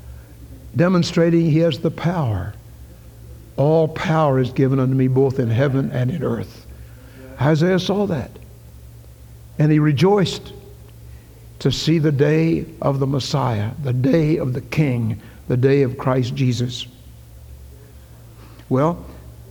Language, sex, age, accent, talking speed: English, male, 60-79, American, 125 wpm